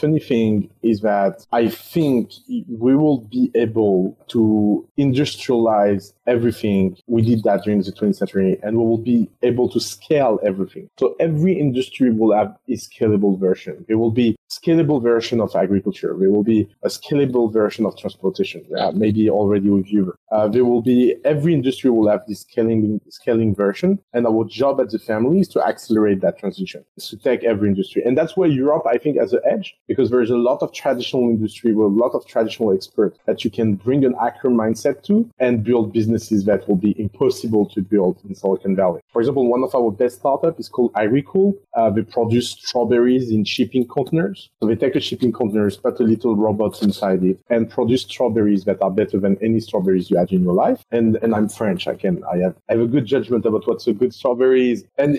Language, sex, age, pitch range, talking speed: English, male, 30-49, 105-125 Hz, 210 wpm